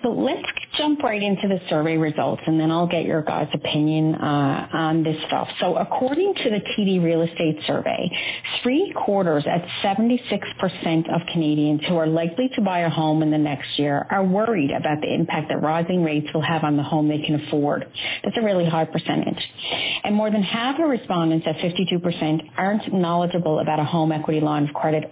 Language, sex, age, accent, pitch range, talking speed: English, female, 40-59, American, 155-195 Hz, 195 wpm